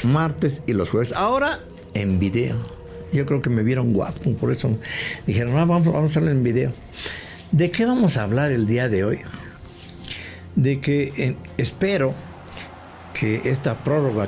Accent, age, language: Mexican, 60-79, English